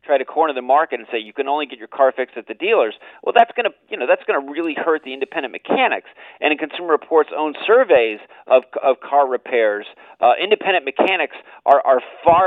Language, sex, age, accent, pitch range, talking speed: English, male, 40-59, American, 130-215 Hz, 215 wpm